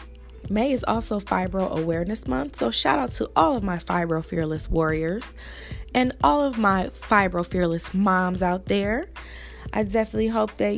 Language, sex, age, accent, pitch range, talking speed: English, female, 20-39, American, 170-200 Hz, 160 wpm